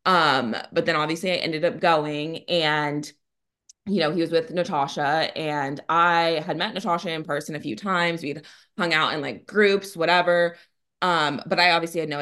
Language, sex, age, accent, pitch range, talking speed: English, female, 20-39, American, 150-175 Hz, 185 wpm